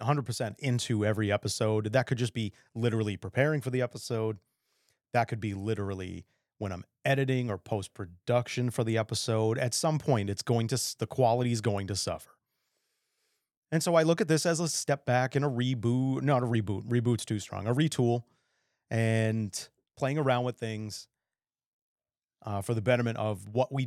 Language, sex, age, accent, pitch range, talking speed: English, male, 30-49, American, 105-130 Hz, 175 wpm